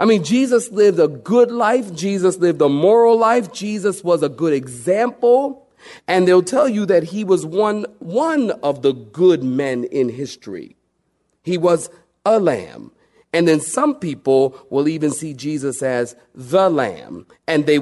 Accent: American